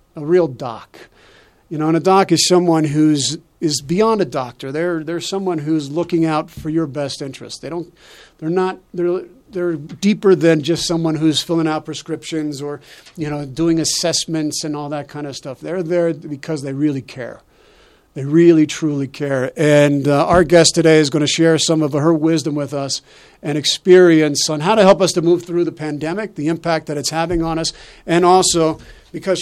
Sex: male